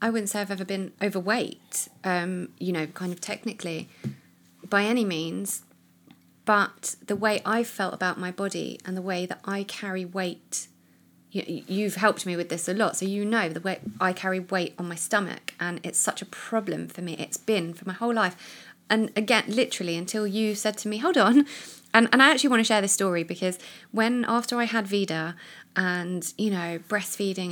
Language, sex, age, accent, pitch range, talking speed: English, female, 30-49, British, 185-225 Hz, 200 wpm